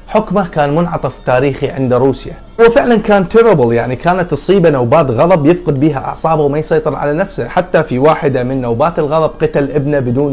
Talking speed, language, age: 175 wpm, Arabic, 20-39